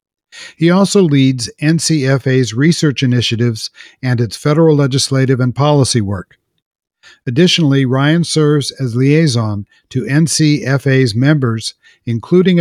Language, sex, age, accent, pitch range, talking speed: English, male, 50-69, American, 120-145 Hz, 105 wpm